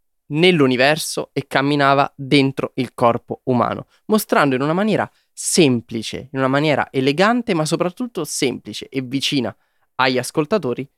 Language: Italian